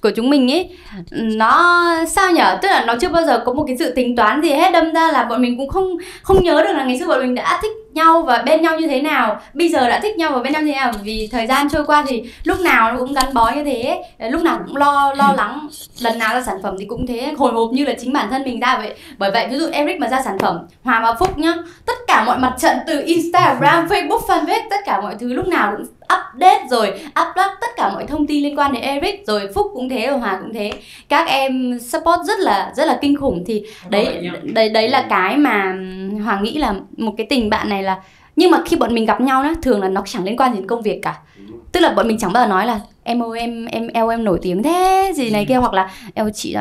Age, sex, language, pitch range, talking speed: 20-39, female, Vietnamese, 225-320 Hz, 270 wpm